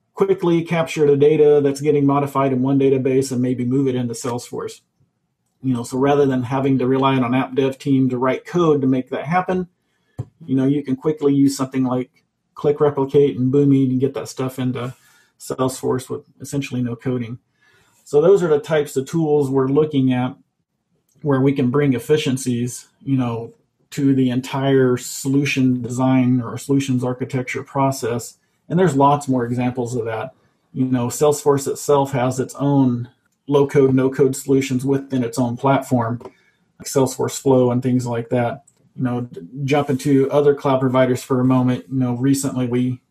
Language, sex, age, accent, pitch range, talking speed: English, male, 40-59, American, 125-140 Hz, 175 wpm